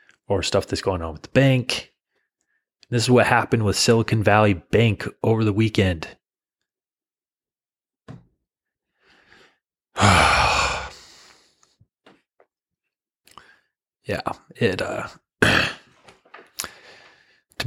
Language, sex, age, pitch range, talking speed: English, male, 30-49, 95-115 Hz, 80 wpm